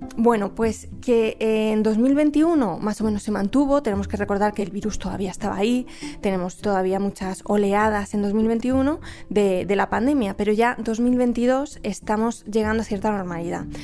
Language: Spanish